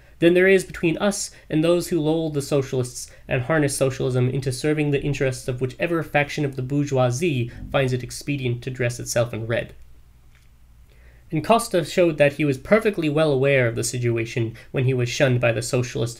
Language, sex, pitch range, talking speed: English, male, 120-160 Hz, 190 wpm